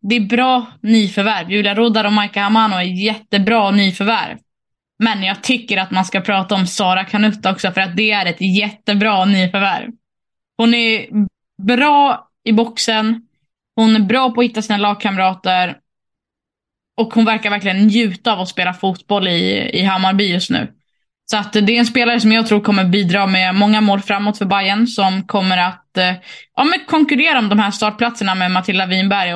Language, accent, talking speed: Swedish, native, 175 wpm